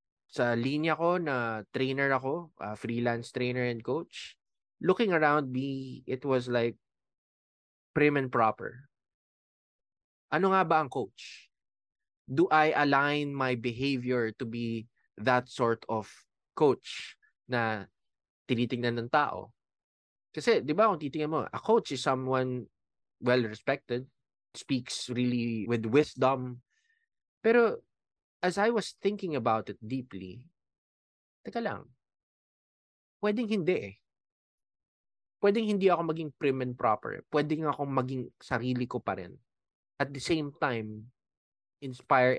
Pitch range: 115-155 Hz